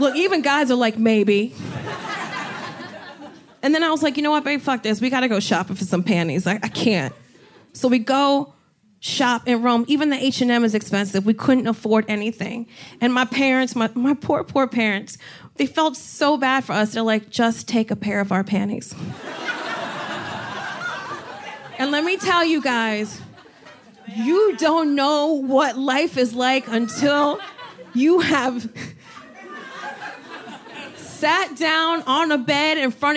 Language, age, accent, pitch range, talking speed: English, 30-49, American, 240-335 Hz, 160 wpm